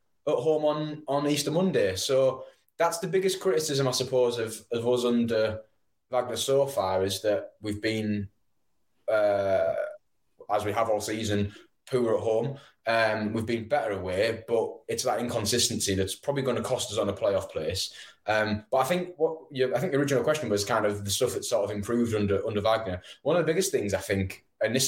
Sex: male